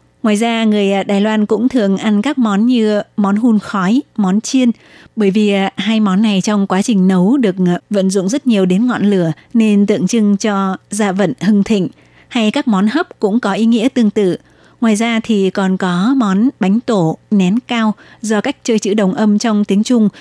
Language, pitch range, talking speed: Vietnamese, 195-225 Hz, 210 wpm